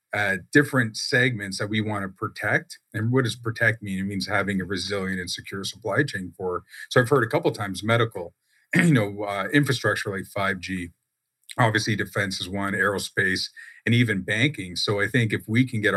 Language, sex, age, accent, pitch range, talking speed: English, male, 40-59, American, 95-115 Hz, 195 wpm